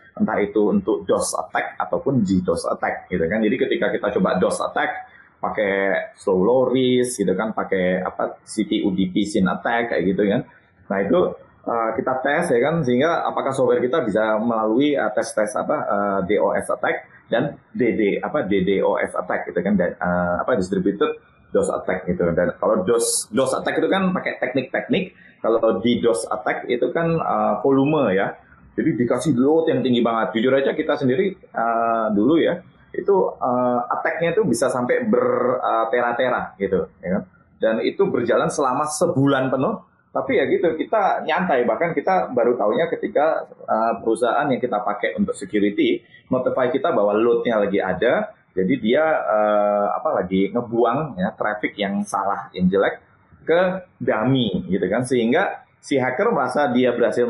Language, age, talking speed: Indonesian, 20-39, 160 wpm